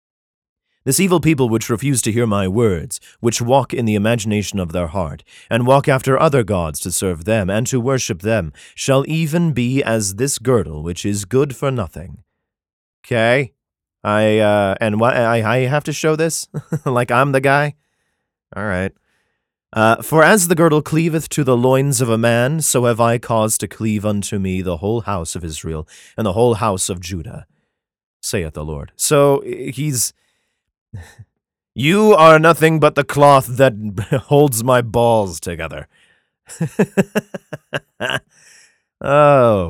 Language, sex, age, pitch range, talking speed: English, male, 30-49, 100-140 Hz, 160 wpm